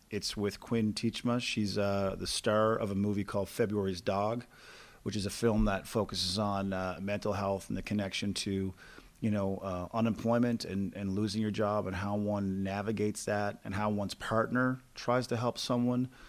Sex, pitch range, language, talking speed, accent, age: male, 95-110 Hz, English, 185 wpm, American, 30-49